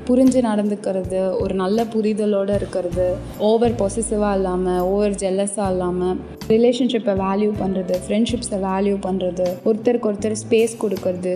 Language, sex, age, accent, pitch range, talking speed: Tamil, female, 20-39, native, 185-220 Hz, 115 wpm